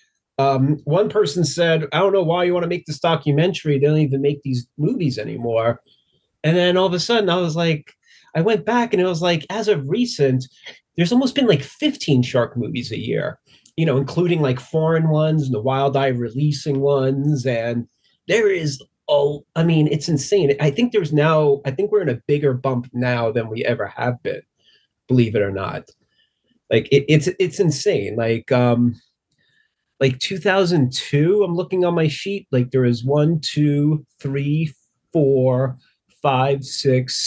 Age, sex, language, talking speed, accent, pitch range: 30-49, male, English, 180 wpm, American, 130-165 Hz